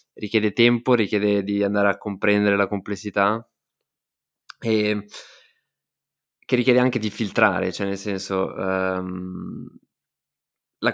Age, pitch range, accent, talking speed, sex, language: 20-39, 100-115 Hz, native, 110 wpm, male, Italian